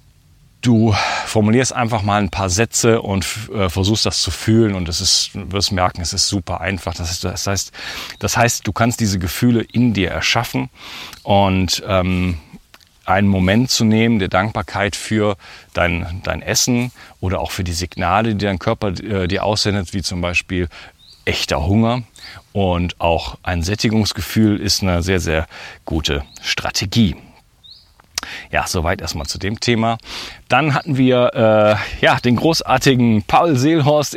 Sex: male